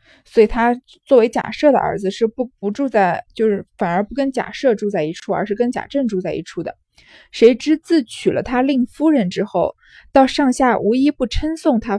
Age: 20-39